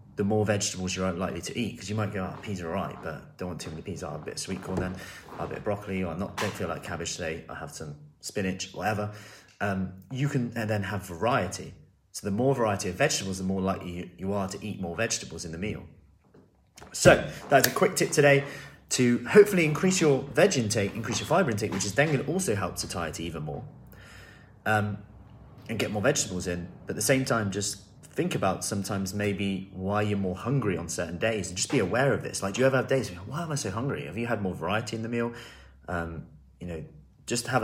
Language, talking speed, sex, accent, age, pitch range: English, 250 wpm, male, British, 30-49, 100-130 Hz